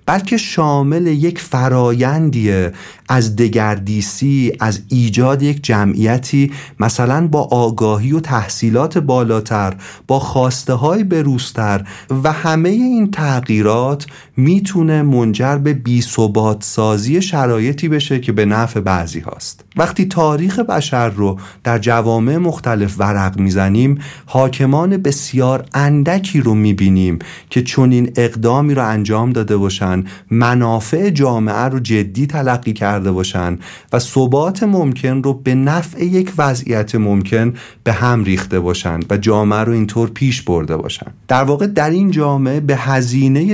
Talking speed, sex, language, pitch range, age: 125 wpm, male, Persian, 110-145 Hz, 40-59